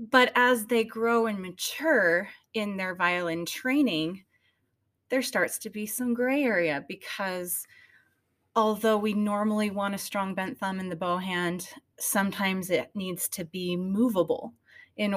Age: 30-49